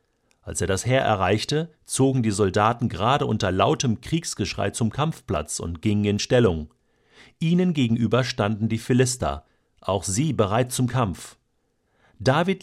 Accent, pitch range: German, 110-140 Hz